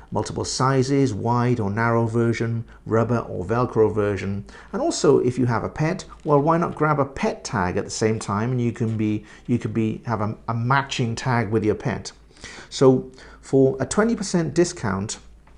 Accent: British